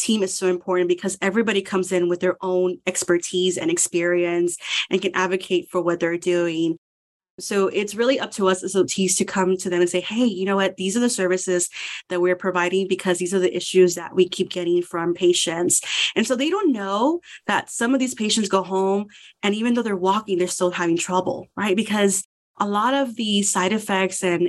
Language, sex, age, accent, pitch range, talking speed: English, female, 30-49, American, 180-205 Hz, 215 wpm